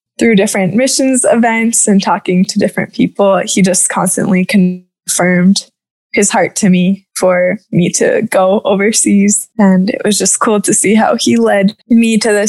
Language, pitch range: English, 190-220 Hz